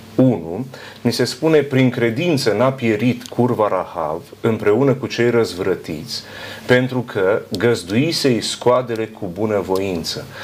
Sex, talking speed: male, 115 wpm